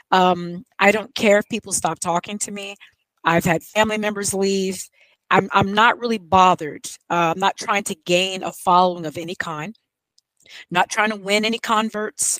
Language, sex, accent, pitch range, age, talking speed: English, female, American, 185-245 Hz, 30-49, 180 wpm